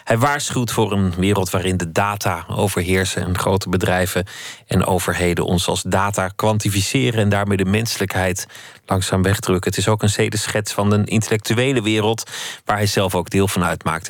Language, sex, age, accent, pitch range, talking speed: Dutch, male, 30-49, Dutch, 90-110 Hz, 170 wpm